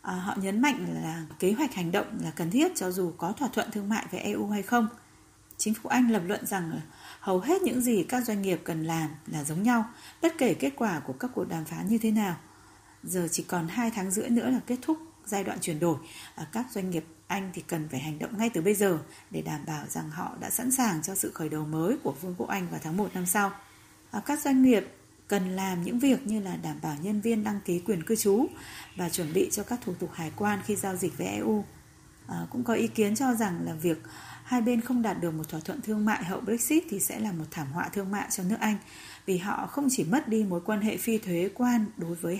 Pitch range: 175-225 Hz